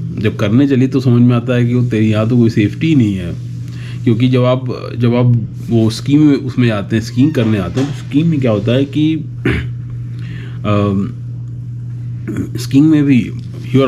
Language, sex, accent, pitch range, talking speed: English, male, Indian, 110-125 Hz, 170 wpm